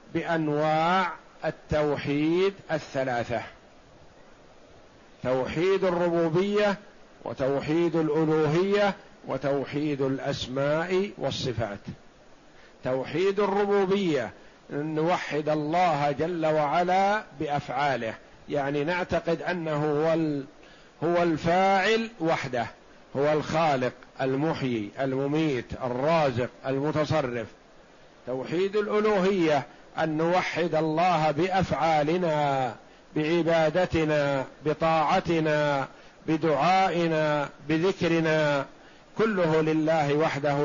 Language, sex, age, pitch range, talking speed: Arabic, male, 50-69, 140-170 Hz, 60 wpm